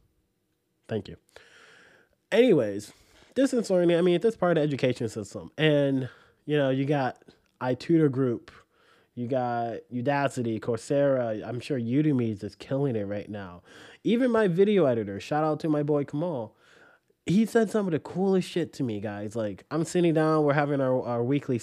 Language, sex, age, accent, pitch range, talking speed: English, male, 20-39, American, 115-145 Hz, 180 wpm